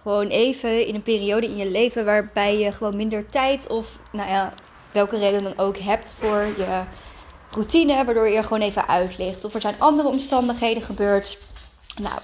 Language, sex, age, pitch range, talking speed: Dutch, female, 20-39, 210-255 Hz, 180 wpm